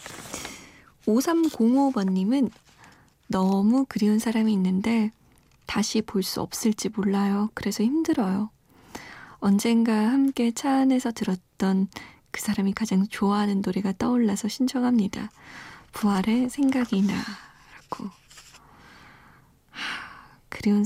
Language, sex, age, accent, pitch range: Korean, female, 20-39, native, 200-255 Hz